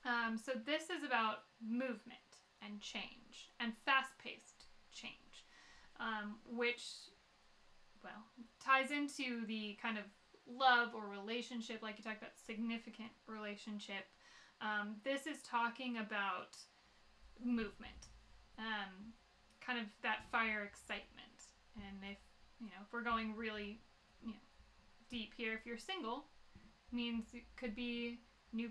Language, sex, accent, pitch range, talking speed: English, female, American, 215-245 Hz, 125 wpm